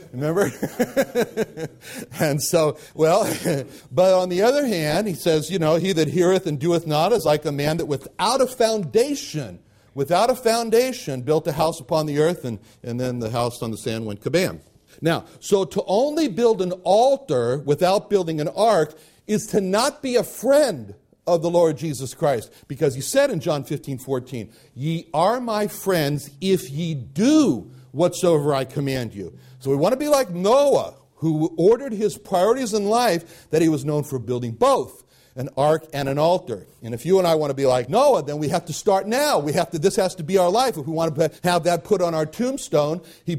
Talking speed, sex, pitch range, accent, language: 205 wpm, male, 145-190 Hz, American, English